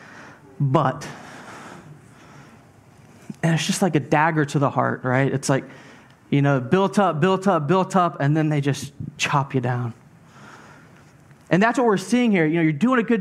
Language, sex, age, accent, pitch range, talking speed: English, male, 20-39, American, 145-200 Hz, 180 wpm